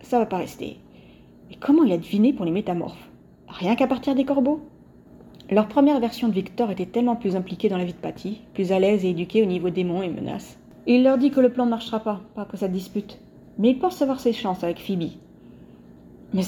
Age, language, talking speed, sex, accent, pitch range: 30-49, French, 235 wpm, female, French, 180-220 Hz